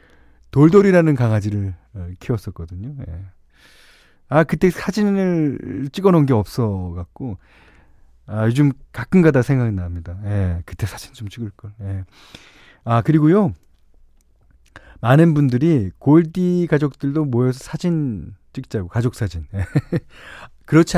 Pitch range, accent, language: 90-140 Hz, native, Korean